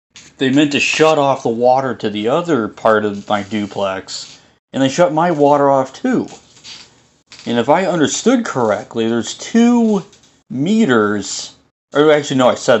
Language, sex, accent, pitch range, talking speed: English, male, American, 110-145 Hz, 155 wpm